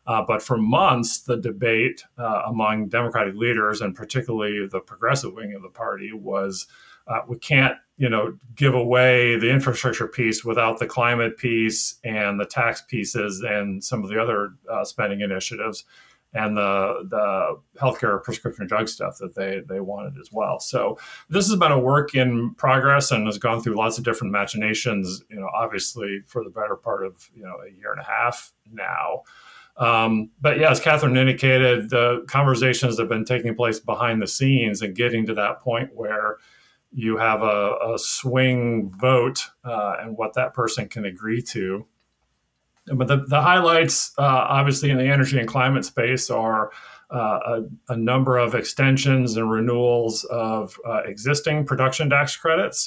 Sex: male